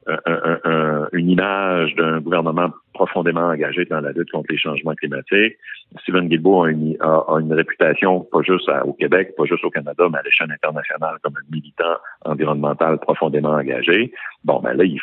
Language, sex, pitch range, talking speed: French, male, 75-95 Hz, 190 wpm